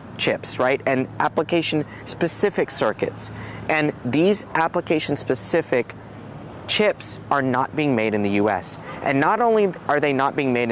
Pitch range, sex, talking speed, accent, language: 115-155 Hz, male, 135 wpm, American, English